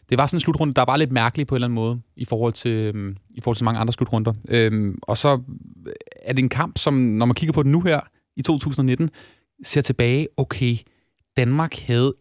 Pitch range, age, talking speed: 115-140 Hz, 30-49, 230 wpm